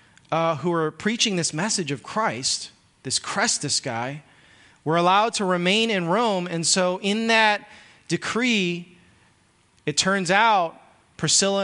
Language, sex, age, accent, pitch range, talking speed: English, male, 30-49, American, 150-195 Hz, 135 wpm